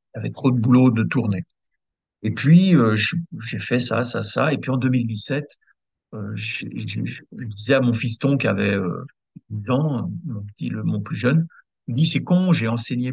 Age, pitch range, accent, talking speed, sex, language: 50-69, 105-140 Hz, French, 205 wpm, male, French